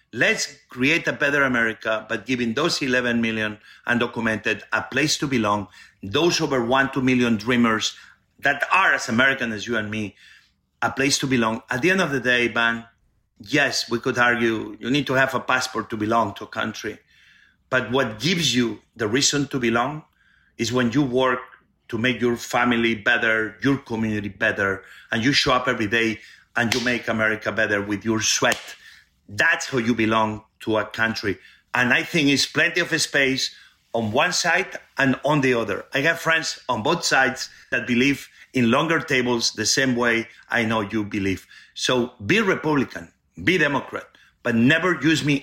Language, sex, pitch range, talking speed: English, male, 110-135 Hz, 180 wpm